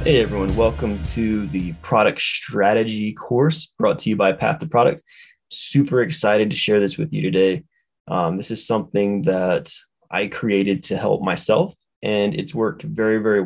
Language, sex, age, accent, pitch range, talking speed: English, male, 20-39, American, 100-145 Hz, 170 wpm